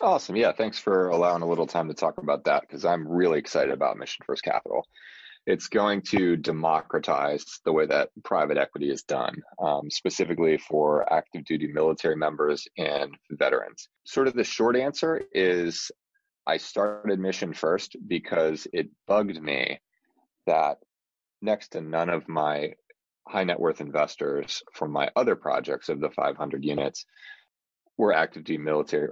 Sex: male